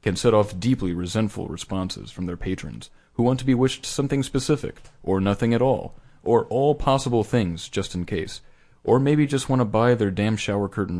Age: 40-59